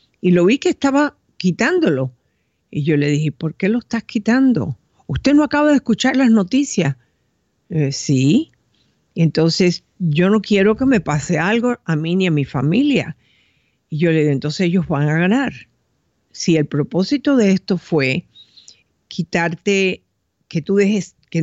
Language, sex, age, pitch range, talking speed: Spanish, female, 50-69, 155-210 Hz, 160 wpm